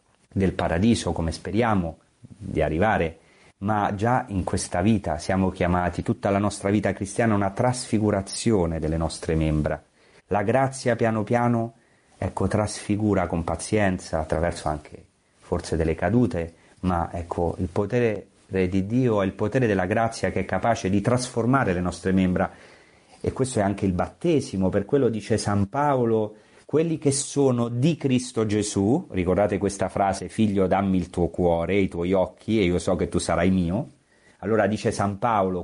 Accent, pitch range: native, 90-115 Hz